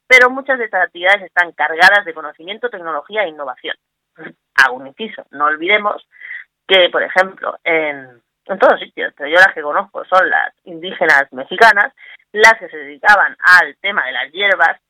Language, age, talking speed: Spanish, 20-39, 165 wpm